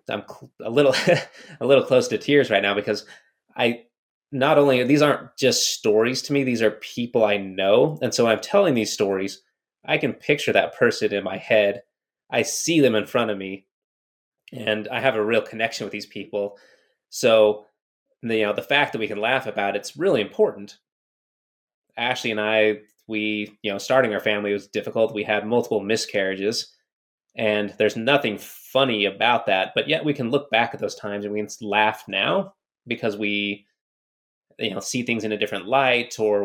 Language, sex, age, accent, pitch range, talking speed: English, male, 20-39, American, 100-120 Hz, 190 wpm